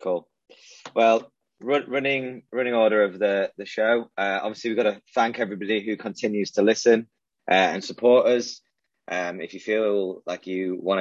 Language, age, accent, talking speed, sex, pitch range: English, 20-39, British, 175 wpm, male, 90-115 Hz